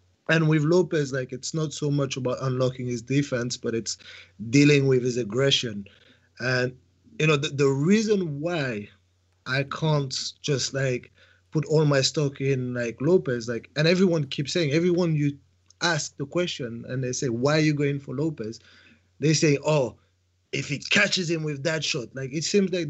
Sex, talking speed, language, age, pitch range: male, 180 wpm, English, 30-49, 125-150 Hz